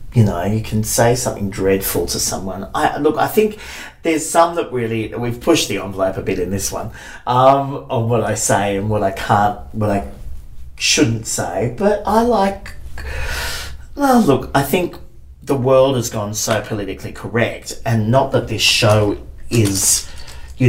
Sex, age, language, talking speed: male, 40-59, English, 175 wpm